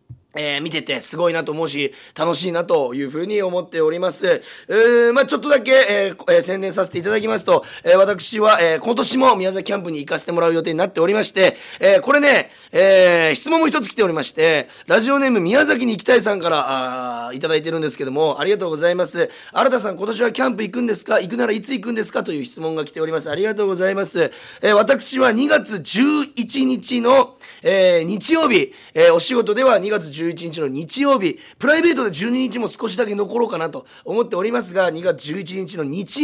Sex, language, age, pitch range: male, Japanese, 30-49, 165-245 Hz